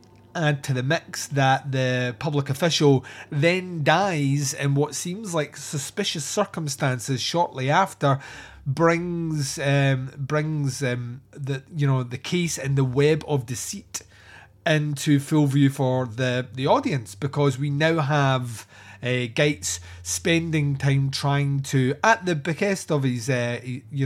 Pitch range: 125-155 Hz